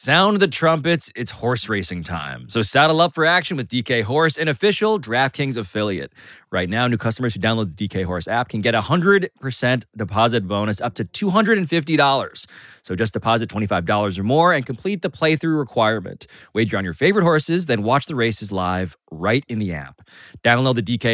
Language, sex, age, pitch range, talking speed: English, male, 20-39, 105-160 Hz, 185 wpm